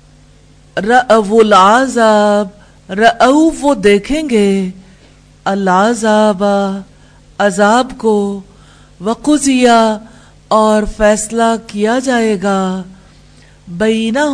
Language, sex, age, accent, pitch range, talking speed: English, female, 50-69, Indian, 195-230 Hz, 60 wpm